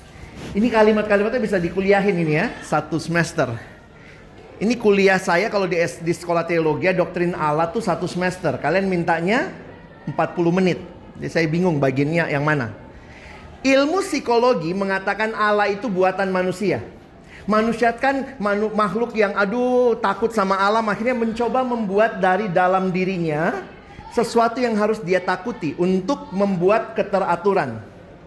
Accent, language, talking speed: native, Indonesian, 130 wpm